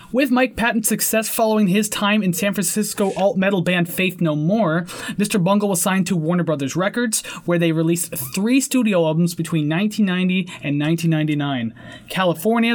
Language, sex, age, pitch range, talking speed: English, male, 20-39, 160-205 Hz, 160 wpm